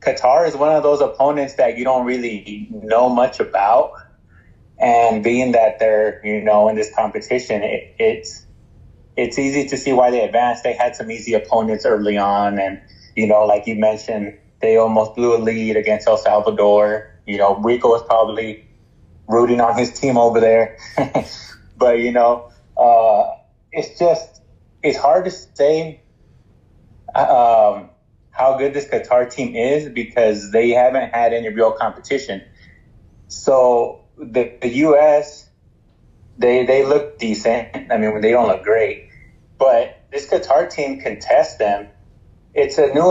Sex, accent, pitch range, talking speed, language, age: male, American, 110-135 Hz, 155 wpm, English, 20-39